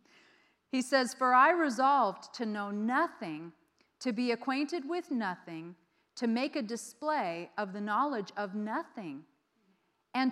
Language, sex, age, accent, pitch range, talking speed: English, female, 40-59, American, 195-270 Hz, 135 wpm